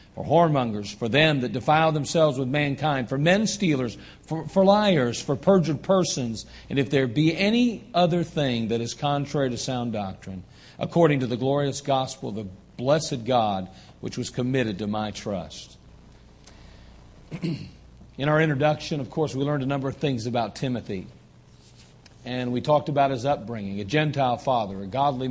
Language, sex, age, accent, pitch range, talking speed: English, male, 50-69, American, 120-155 Hz, 165 wpm